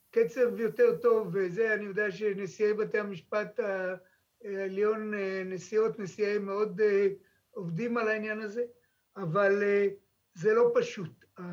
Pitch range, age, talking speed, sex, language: 185-220 Hz, 60-79, 110 wpm, male, Hebrew